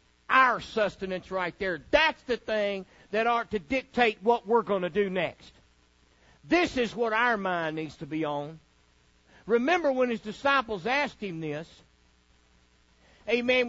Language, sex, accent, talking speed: English, male, American, 150 wpm